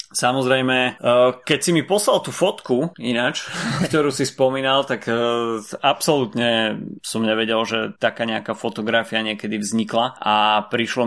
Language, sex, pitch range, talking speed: Slovak, male, 105-125 Hz, 125 wpm